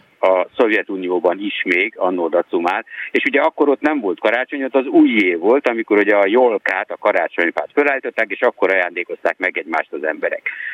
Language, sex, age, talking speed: Hungarian, male, 60-79, 175 wpm